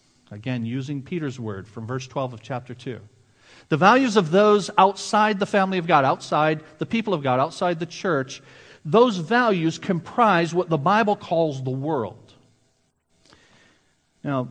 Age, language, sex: 40-59, English, male